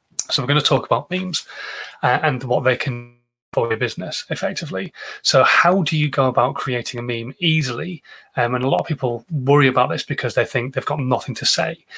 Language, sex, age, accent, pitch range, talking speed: English, male, 30-49, British, 125-155 Hz, 215 wpm